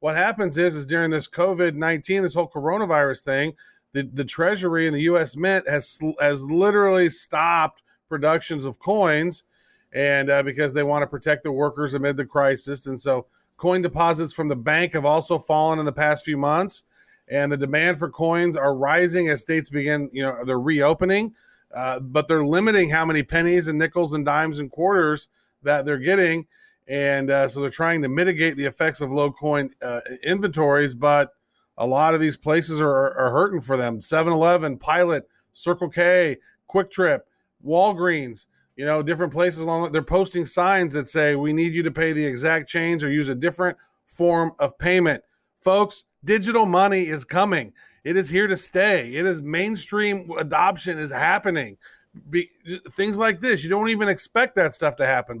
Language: English